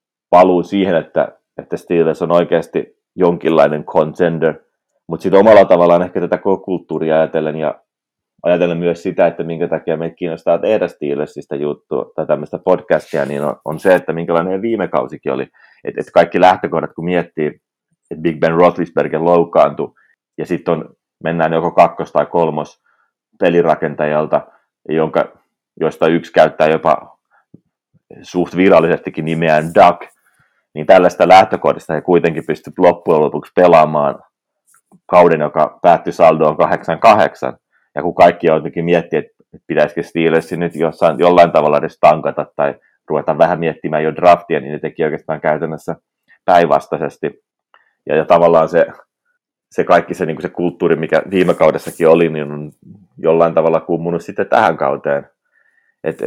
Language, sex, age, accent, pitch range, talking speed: Finnish, male, 30-49, native, 80-90 Hz, 140 wpm